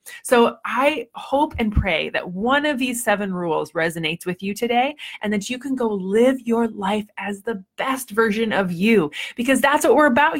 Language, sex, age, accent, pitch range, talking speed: English, female, 20-39, American, 190-235 Hz, 195 wpm